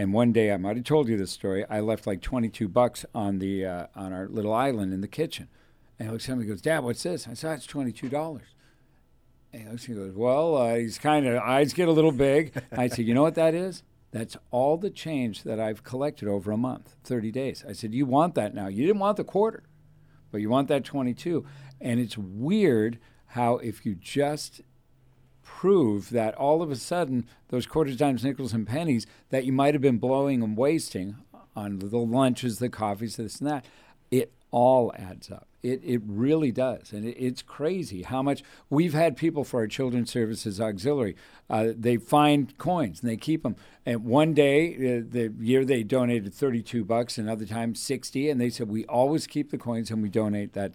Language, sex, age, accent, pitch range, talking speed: English, male, 50-69, American, 110-140 Hz, 205 wpm